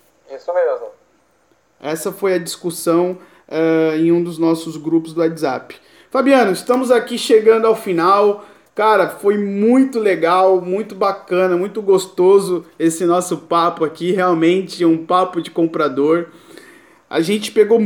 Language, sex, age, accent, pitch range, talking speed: Portuguese, male, 20-39, Brazilian, 165-220 Hz, 130 wpm